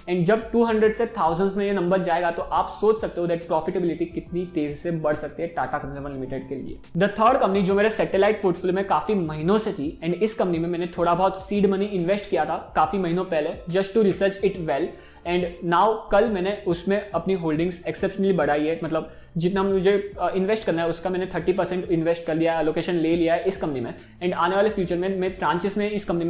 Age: 20-39